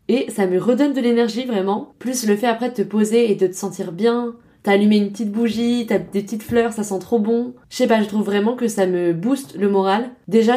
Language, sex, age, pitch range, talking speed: French, female, 20-39, 190-220 Hz, 255 wpm